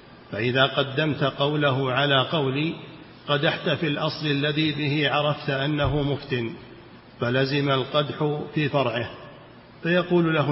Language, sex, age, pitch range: Arabic, male, 50-69, 135-150 Hz